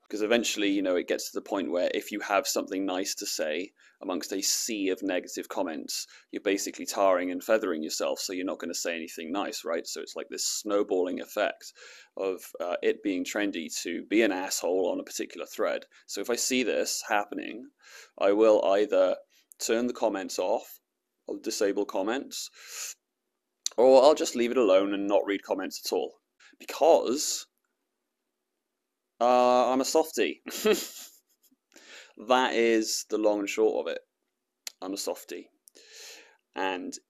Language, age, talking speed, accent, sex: English, 30-49, 165 wpm, British, male